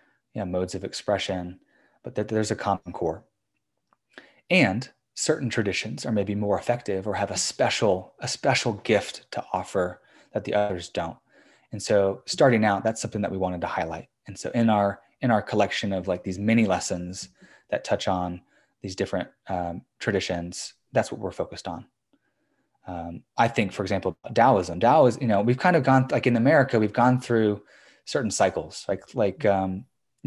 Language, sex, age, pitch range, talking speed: English, male, 20-39, 95-110 Hz, 180 wpm